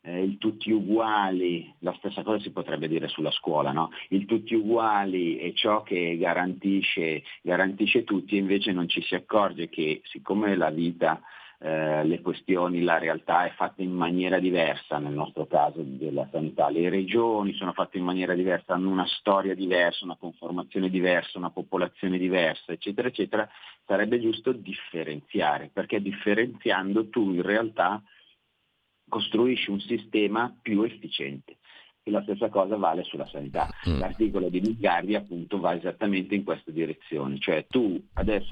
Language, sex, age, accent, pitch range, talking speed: Italian, male, 40-59, native, 90-105 Hz, 150 wpm